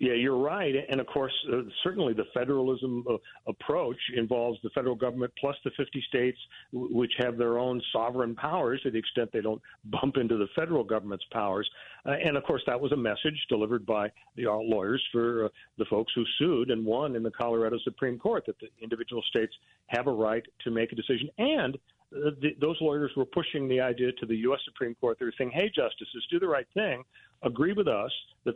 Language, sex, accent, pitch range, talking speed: English, male, American, 115-145 Hz, 210 wpm